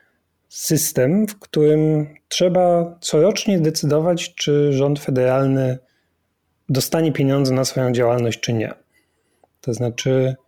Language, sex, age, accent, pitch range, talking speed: Polish, male, 30-49, native, 120-160 Hz, 105 wpm